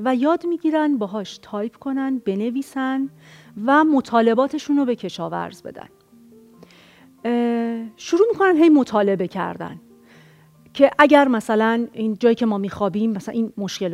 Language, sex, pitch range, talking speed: Persian, female, 200-275 Hz, 130 wpm